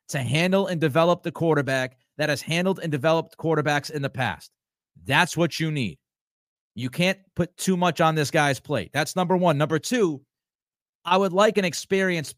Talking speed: 185 wpm